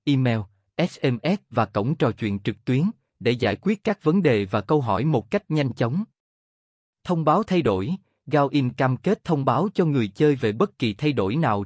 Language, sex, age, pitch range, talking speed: Vietnamese, male, 20-39, 110-155 Hz, 200 wpm